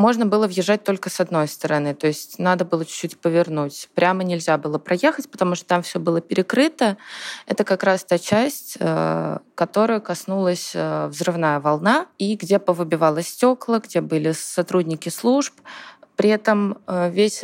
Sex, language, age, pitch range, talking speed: female, Russian, 20-39, 165-210 Hz, 150 wpm